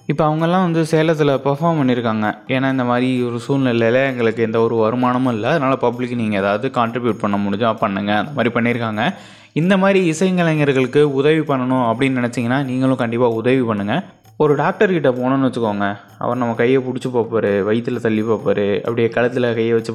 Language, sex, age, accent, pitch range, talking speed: Tamil, male, 20-39, native, 115-150 Hz, 160 wpm